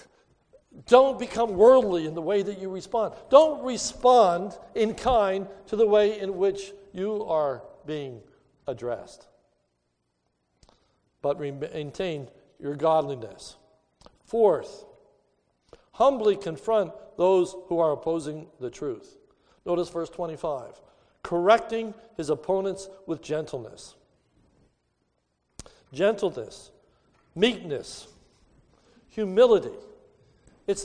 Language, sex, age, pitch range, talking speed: English, male, 60-79, 175-225 Hz, 90 wpm